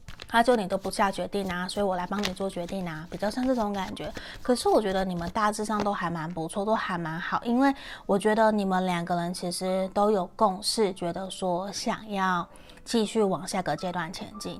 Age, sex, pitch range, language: 20-39, female, 180-220 Hz, Chinese